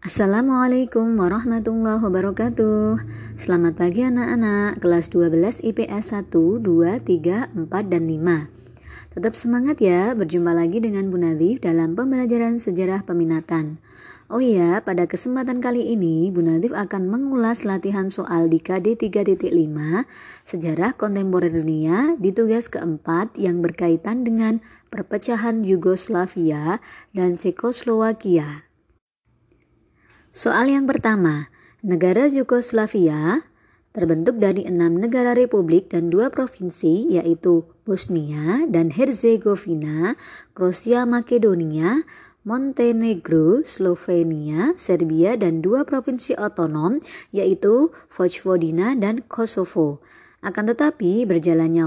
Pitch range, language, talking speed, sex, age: 170-230 Hz, Indonesian, 100 wpm, male, 20-39